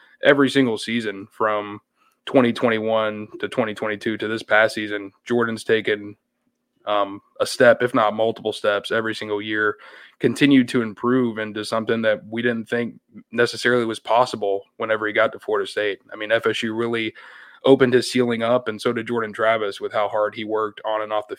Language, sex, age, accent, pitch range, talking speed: English, male, 20-39, American, 110-120 Hz, 175 wpm